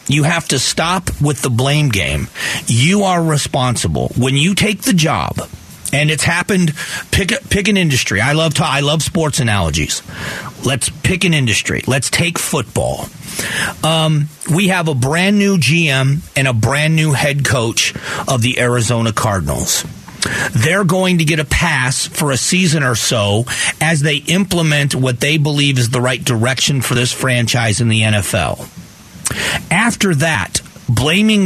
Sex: male